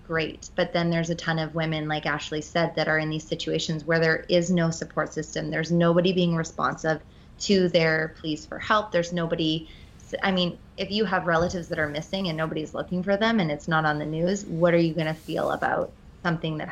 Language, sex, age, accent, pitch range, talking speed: English, female, 20-39, American, 160-180 Hz, 225 wpm